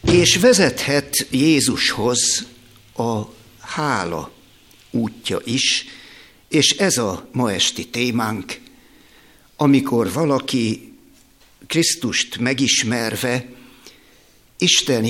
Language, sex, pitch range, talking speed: Hungarian, male, 110-140 Hz, 70 wpm